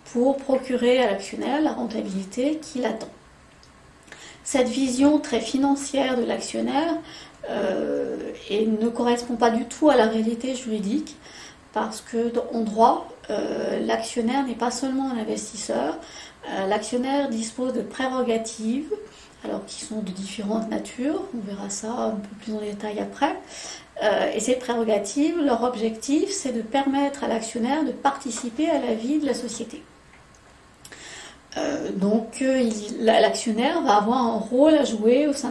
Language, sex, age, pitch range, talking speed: French, female, 30-49, 225-265 Hz, 145 wpm